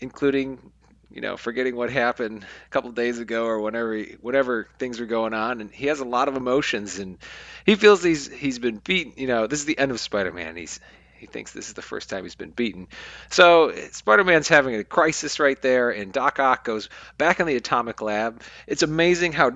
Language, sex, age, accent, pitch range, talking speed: English, male, 40-59, American, 105-140 Hz, 220 wpm